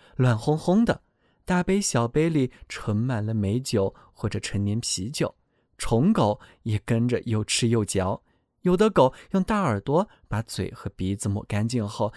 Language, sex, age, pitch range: Chinese, male, 20-39, 110-175 Hz